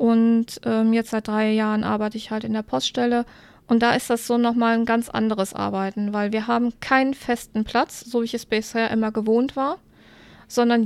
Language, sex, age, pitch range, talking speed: German, female, 20-39, 210-235 Hz, 205 wpm